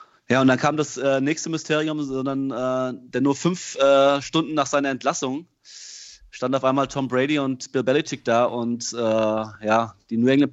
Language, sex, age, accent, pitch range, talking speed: German, male, 30-49, German, 115-140 Hz, 190 wpm